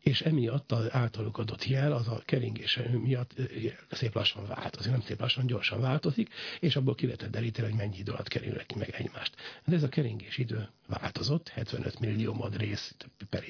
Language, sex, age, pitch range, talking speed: Hungarian, male, 60-79, 110-130 Hz, 180 wpm